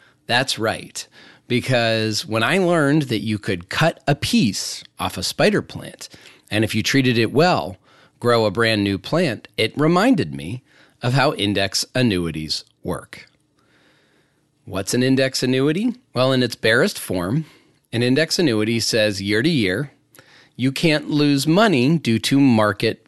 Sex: male